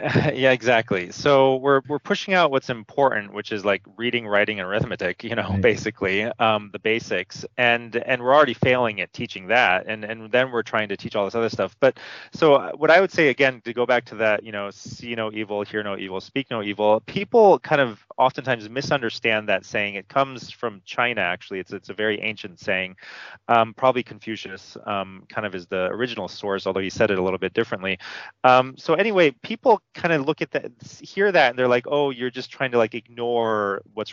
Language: English